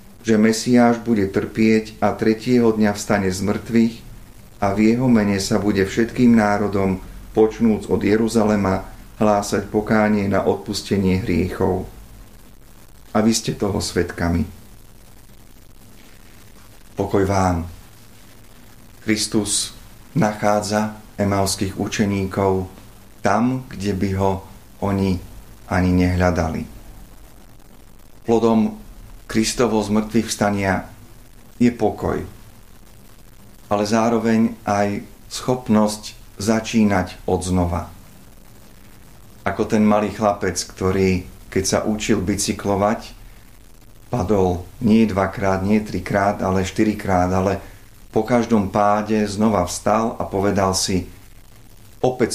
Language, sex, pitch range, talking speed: Slovak, male, 95-110 Hz, 95 wpm